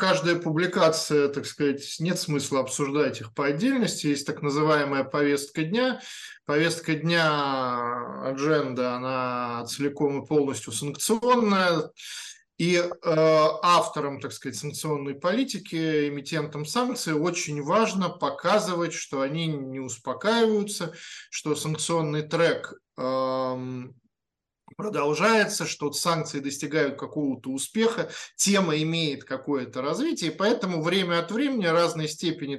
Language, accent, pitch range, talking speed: Russian, native, 140-170 Hz, 110 wpm